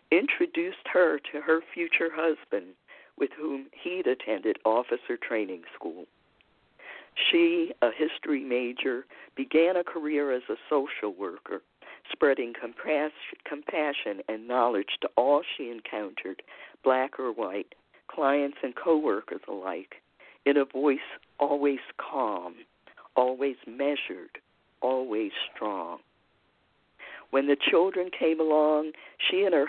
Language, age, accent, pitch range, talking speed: English, 50-69, American, 125-165 Hz, 115 wpm